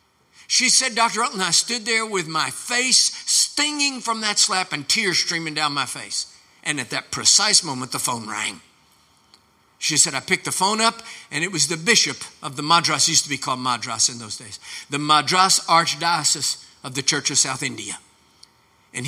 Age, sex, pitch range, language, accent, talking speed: 50-69, male, 145-200 Hz, English, American, 190 wpm